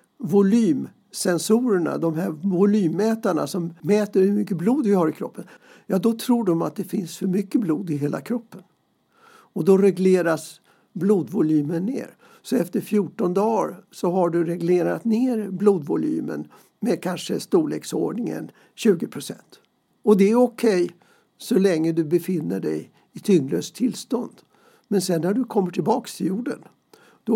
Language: Swedish